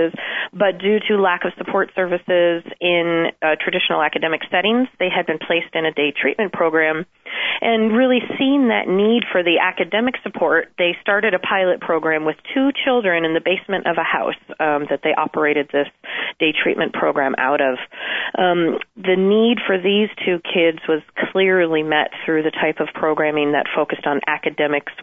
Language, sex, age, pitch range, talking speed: English, female, 30-49, 170-235 Hz, 175 wpm